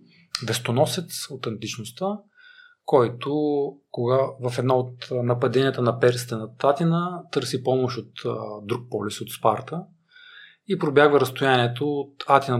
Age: 40-59